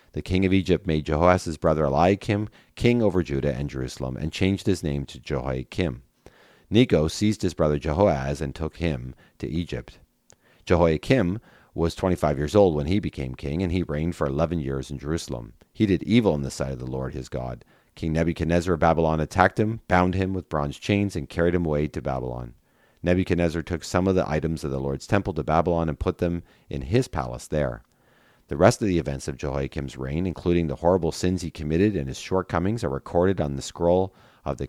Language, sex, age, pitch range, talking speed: English, male, 40-59, 70-95 Hz, 200 wpm